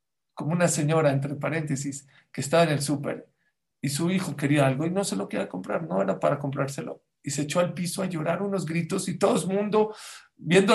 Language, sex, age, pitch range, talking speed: English, male, 50-69, 145-195 Hz, 220 wpm